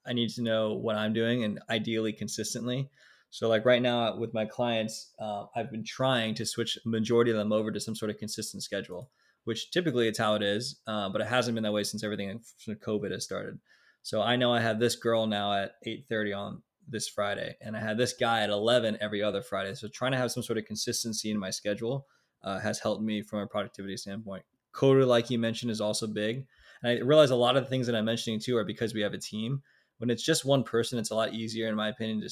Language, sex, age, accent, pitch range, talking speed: English, male, 20-39, American, 105-120 Hz, 245 wpm